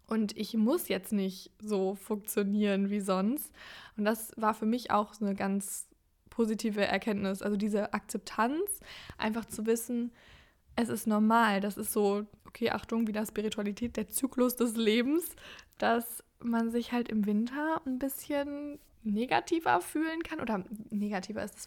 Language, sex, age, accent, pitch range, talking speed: German, female, 20-39, German, 210-240 Hz, 150 wpm